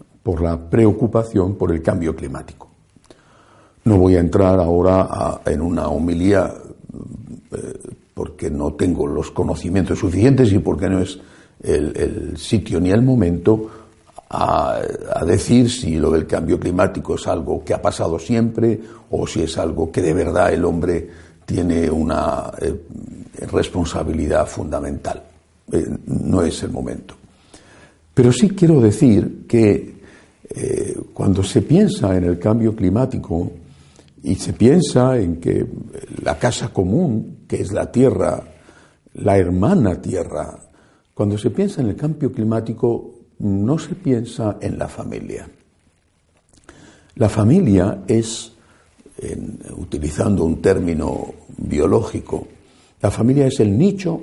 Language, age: Spanish, 60-79